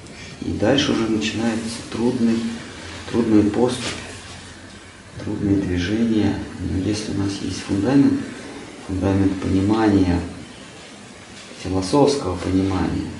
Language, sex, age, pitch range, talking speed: Russian, male, 30-49, 95-110 Hz, 85 wpm